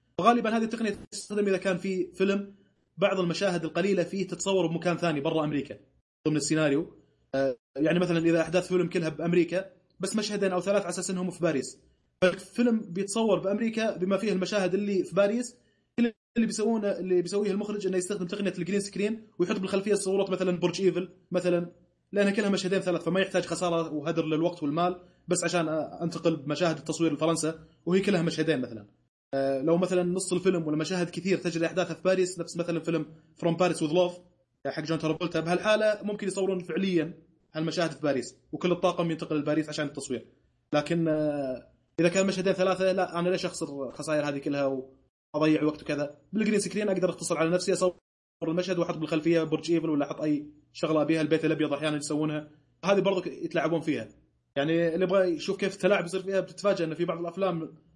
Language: Arabic